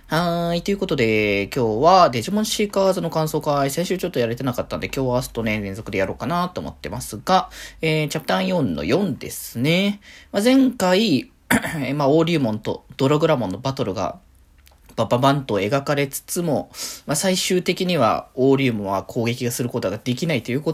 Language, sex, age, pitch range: Japanese, male, 20-39, 125-170 Hz